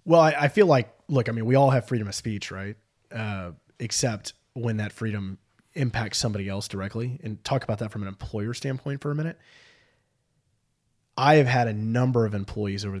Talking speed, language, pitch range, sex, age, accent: 200 wpm, English, 105-130 Hz, male, 20-39, American